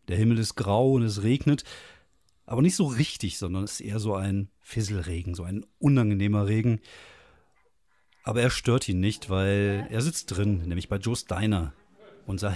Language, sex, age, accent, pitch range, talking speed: German, male, 40-59, German, 100-125 Hz, 170 wpm